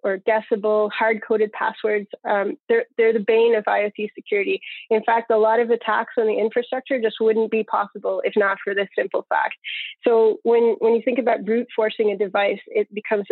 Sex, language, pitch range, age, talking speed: female, English, 205-235 Hz, 20-39, 195 wpm